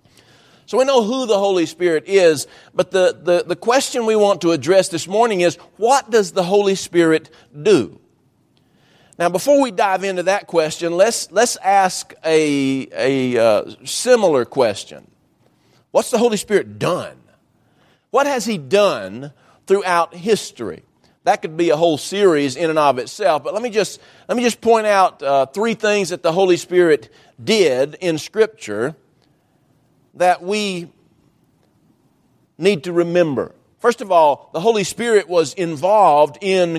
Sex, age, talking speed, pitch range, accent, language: male, 50-69, 155 wpm, 165-215 Hz, American, English